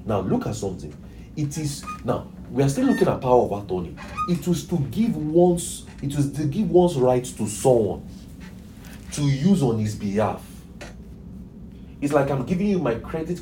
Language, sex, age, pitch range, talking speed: English, male, 40-59, 110-175 Hz, 180 wpm